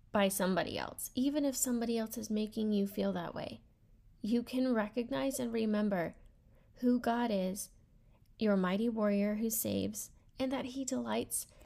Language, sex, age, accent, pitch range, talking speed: English, female, 10-29, American, 195-235 Hz, 155 wpm